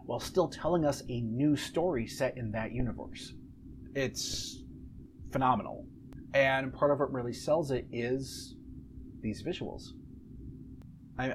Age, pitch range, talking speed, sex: 30-49, 110-135 Hz, 125 wpm, male